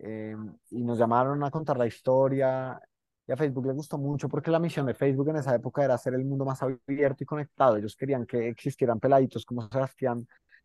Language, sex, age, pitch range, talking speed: Spanish, male, 20-39, 120-140 Hz, 210 wpm